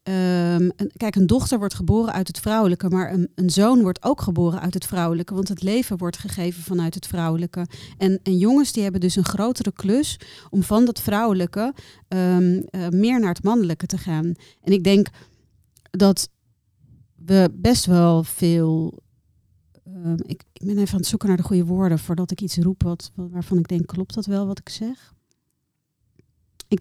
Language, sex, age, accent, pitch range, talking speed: Dutch, female, 40-59, Dutch, 170-200 Hz, 175 wpm